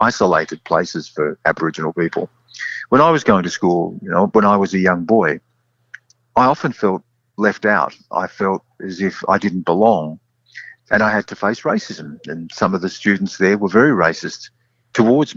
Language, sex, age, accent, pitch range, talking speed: English, male, 50-69, Australian, 85-120 Hz, 185 wpm